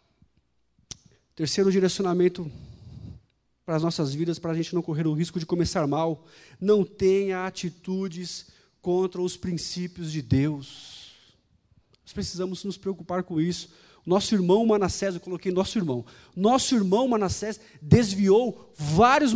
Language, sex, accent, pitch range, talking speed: Portuguese, male, Brazilian, 165-235 Hz, 130 wpm